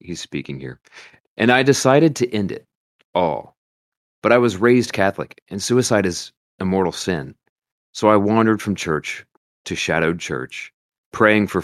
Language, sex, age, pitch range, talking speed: English, male, 30-49, 80-105 Hz, 160 wpm